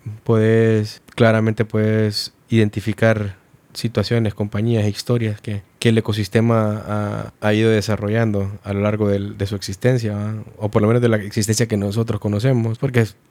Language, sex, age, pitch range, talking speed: Spanish, male, 20-39, 100-115 Hz, 155 wpm